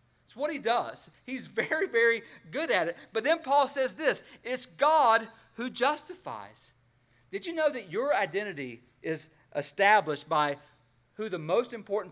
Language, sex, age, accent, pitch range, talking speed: English, male, 40-59, American, 145-230 Hz, 160 wpm